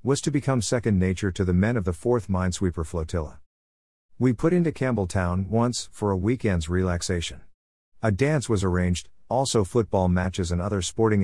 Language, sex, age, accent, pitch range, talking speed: English, male, 50-69, American, 85-115 Hz, 170 wpm